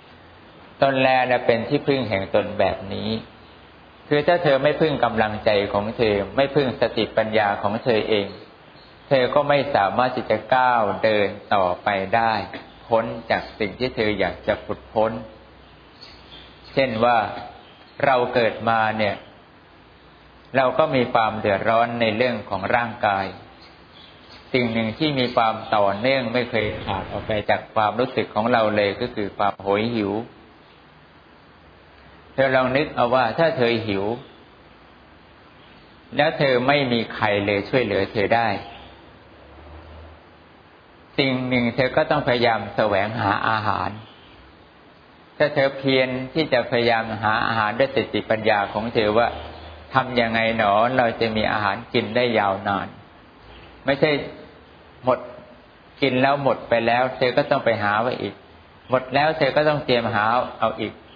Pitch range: 95-125 Hz